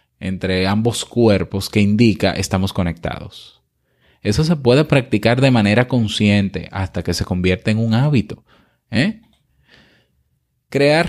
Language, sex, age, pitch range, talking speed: Spanish, male, 20-39, 95-125 Hz, 125 wpm